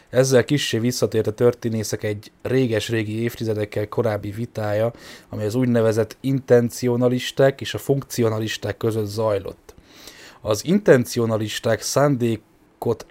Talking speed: 105 wpm